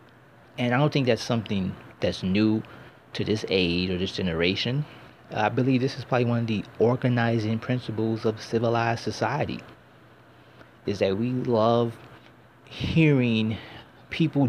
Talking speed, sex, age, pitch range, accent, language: 135 wpm, male, 30-49, 105-125 Hz, American, English